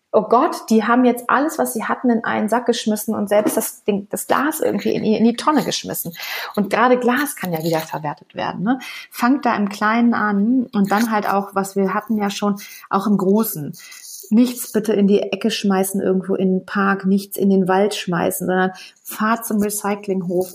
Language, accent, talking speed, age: German, German, 205 wpm, 30-49